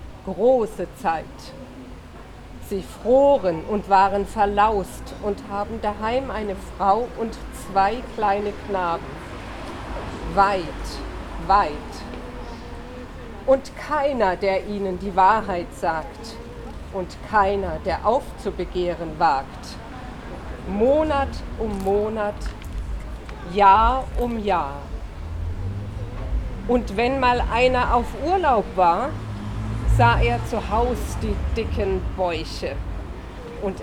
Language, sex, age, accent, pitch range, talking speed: German, female, 50-69, German, 180-245 Hz, 90 wpm